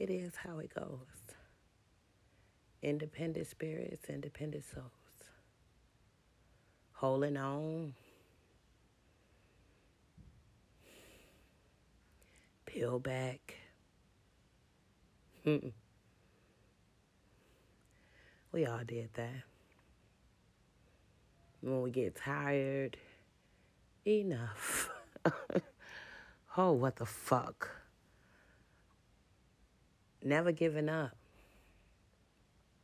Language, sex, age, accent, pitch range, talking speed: English, female, 30-49, American, 100-145 Hz, 55 wpm